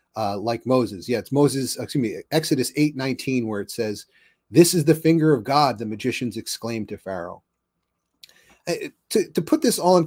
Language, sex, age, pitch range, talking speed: English, male, 30-49, 115-145 Hz, 190 wpm